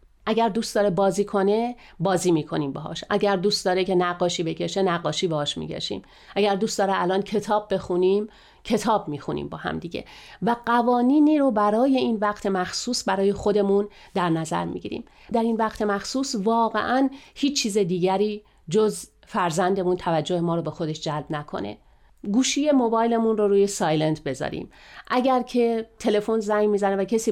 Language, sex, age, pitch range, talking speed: Persian, female, 40-59, 180-235 Hz, 160 wpm